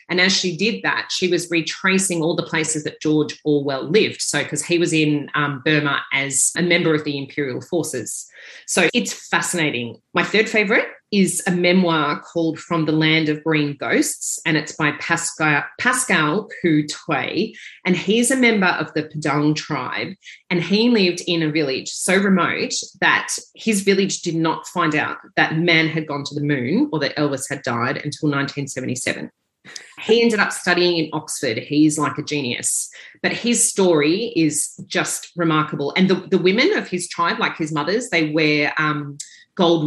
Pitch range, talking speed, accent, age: 150-180 Hz, 180 wpm, Australian, 30-49